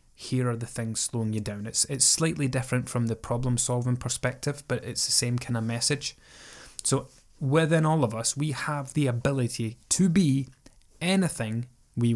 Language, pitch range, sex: English, 110-125 Hz, male